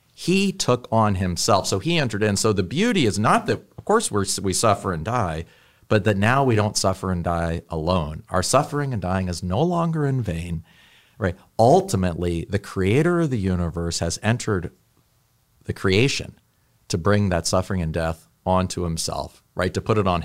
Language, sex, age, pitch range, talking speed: English, male, 40-59, 90-115 Hz, 185 wpm